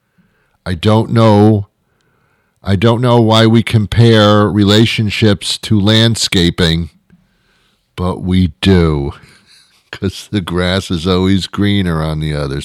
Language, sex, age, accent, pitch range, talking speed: English, male, 50-69, American, 85-125 Hz, 115 wpm